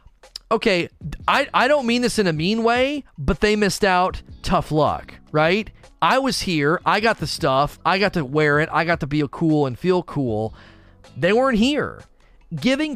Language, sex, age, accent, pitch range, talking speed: English, male, 30-49, American, 155-245 Hz, 190 wpm